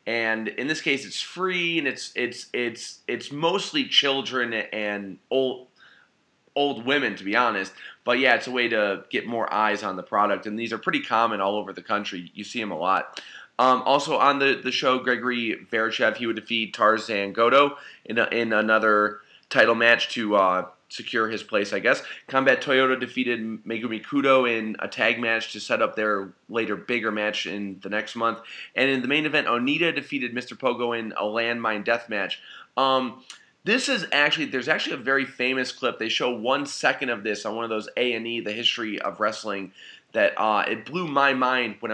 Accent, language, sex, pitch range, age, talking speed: American, English, male, 110-135 Hz, 30-49, 195 wpm